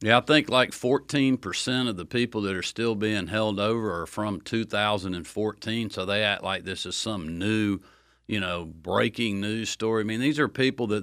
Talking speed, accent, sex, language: 195 wpm, American, male, English